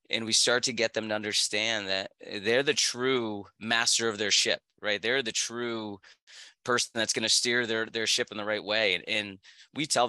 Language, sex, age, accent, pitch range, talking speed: English, male, 20-39, American, 110-130 Hz, 215 wpm